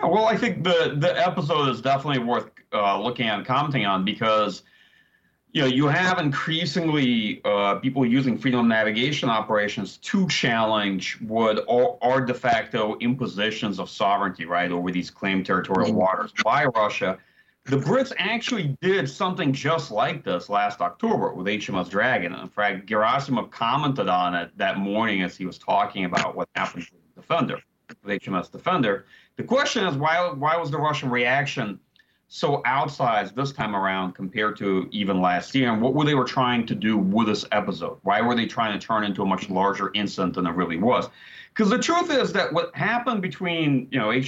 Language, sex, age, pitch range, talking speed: English, male, 30-49, 105-165 Hz, 180 wpm